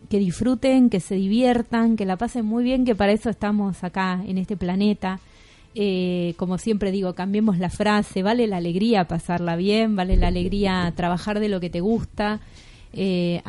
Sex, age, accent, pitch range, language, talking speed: female, 20-39, Argentinian, 185-235 Hz, Spanish, 180 wpm